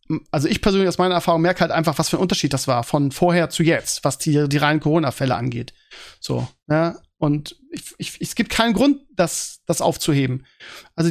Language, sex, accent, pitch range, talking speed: German, male, German, 165-195 Hz, 205 wpm